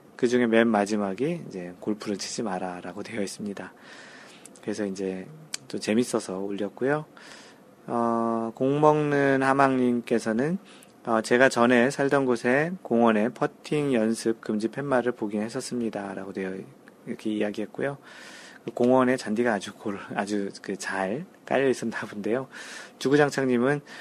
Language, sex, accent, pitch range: Korean, male, native, 105-135 Hz